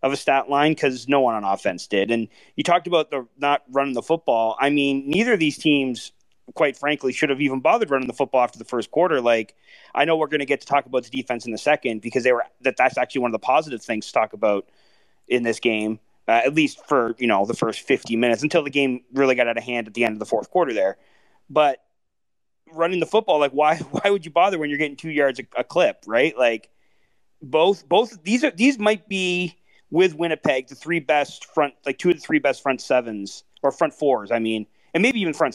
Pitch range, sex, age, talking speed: 125-160 Hz, male, 30-49, 250 wpm